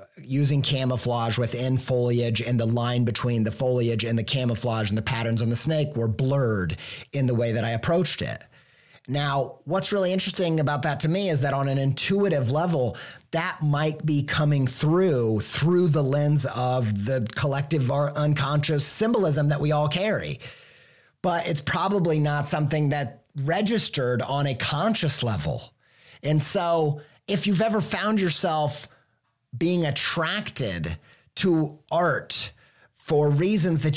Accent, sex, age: American, male, 30-49